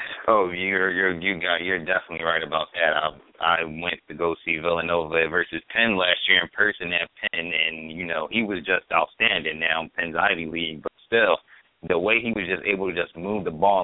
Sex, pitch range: male, 90-115 Hz